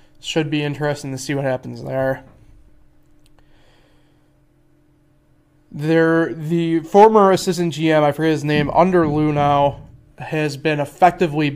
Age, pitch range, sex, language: 20-39, 140-160 Hz, male, English